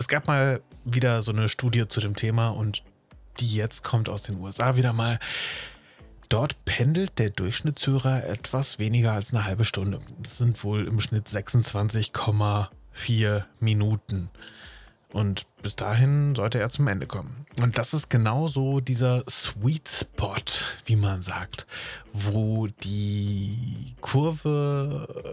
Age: 30-49